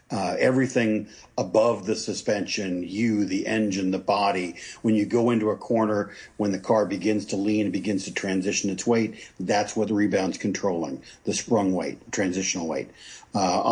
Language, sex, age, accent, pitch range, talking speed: English, male, 50-69, American, 95-115 Hz, 165 wpm